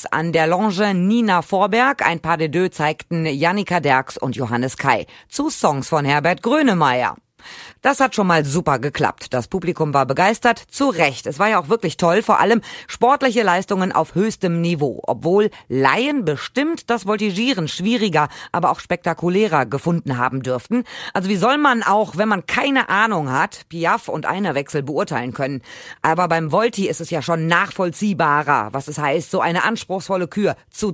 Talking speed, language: 170 wpm, German